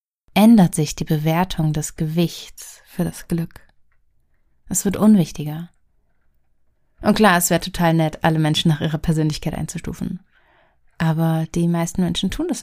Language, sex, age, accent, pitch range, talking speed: German, female, 30-49, German, 160-195 Hz, 145 wpm